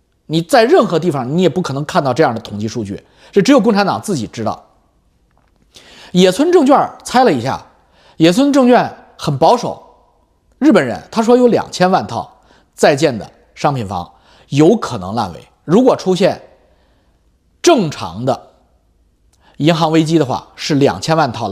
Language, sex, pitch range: Chinese, male, 115-190 Hz